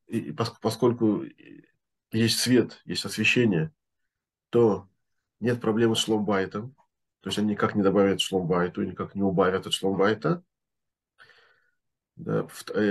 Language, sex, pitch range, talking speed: Russian, male, 110-145 Hz, 110 wpm